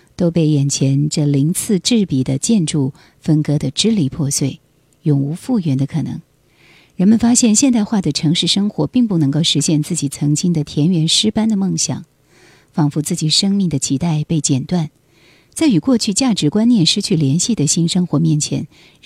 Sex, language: female, Chinese